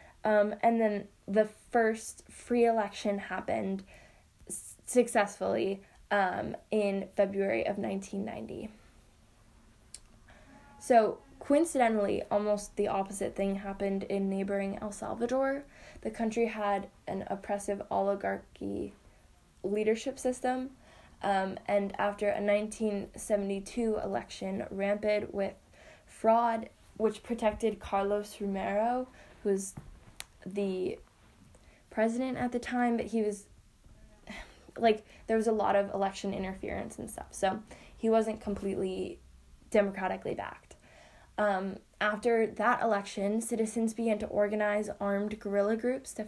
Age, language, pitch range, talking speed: 10-29, English, 195-225 Hz, 110 wpm